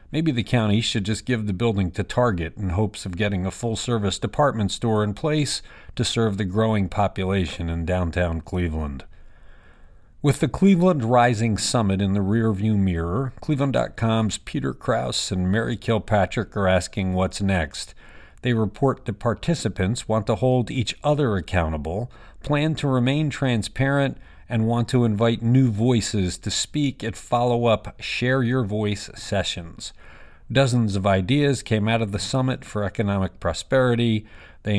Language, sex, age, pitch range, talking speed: English, male, 50-69, 95-120 Hz, 150 wpm